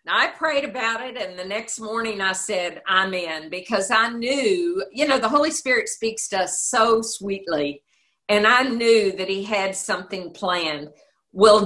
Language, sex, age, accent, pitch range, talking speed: English, female, 50-69, American, 185-240 Hz, 175 wpm